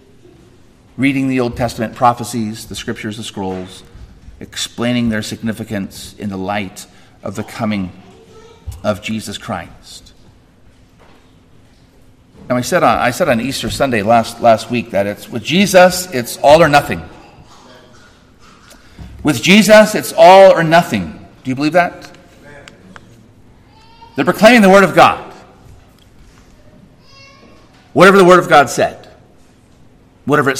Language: English